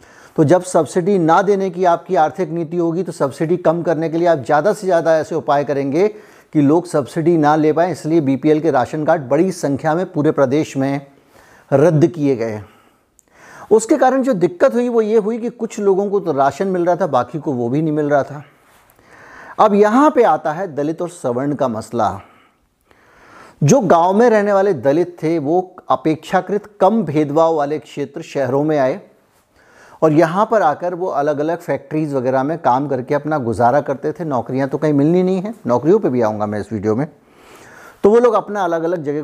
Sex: male